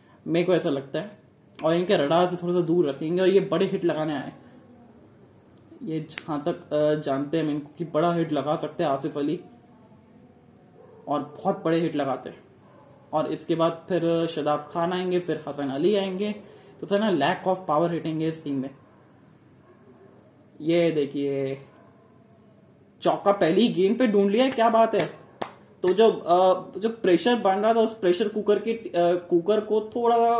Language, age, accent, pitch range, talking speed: Hindi, 20-39, native, 150-190 Hz, 170 wpm